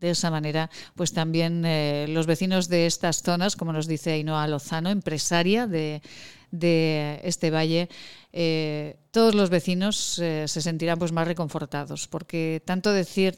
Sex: female